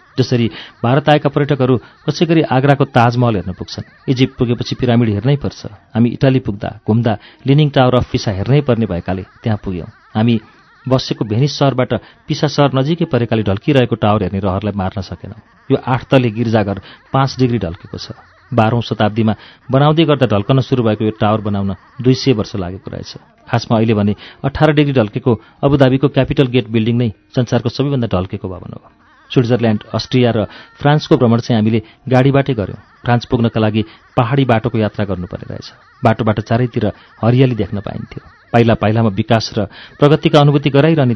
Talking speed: 80 wpm